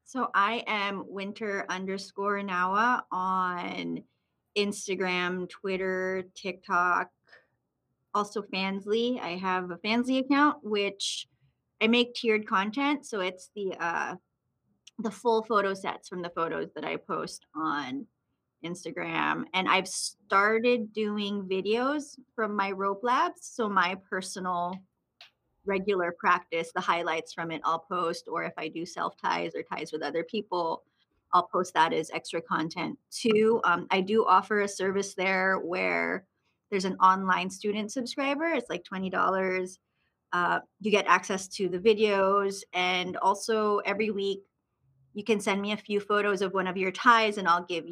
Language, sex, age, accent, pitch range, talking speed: English, female, 30-49, American, 180-215 Hz, 145 wpm